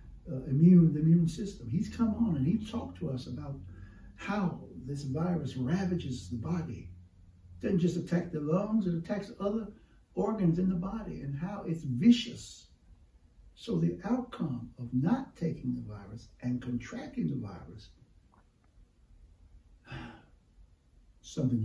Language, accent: English, American